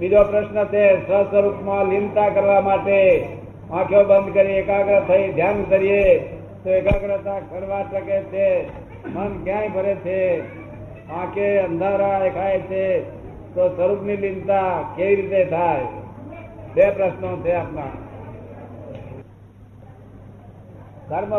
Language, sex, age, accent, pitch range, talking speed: Gujarati, male, 60-79, native, 120-195 Hz, 110 wpm